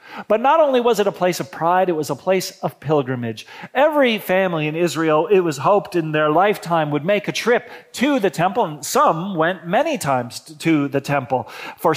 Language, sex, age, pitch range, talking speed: English, male, 40-59, 150-220 Hz, 205 wpm